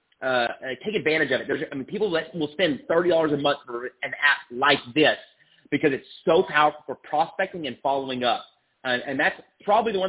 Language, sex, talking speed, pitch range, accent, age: English, male, 210 wpm, 120-155 Hz, American, 30-49